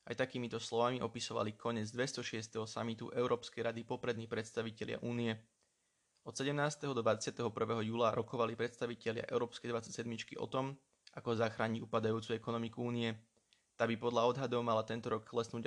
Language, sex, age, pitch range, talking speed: Slovak, male, 20-39, 110-120 Hz, 140 wpm